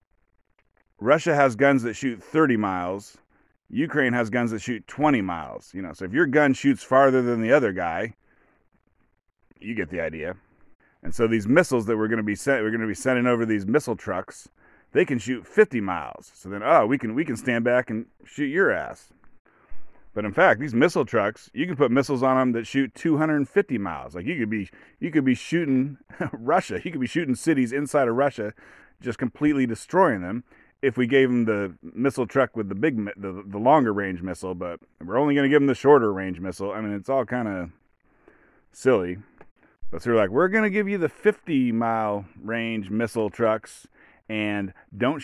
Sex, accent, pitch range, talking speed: male, American, 105-140 Hz, 205 wpm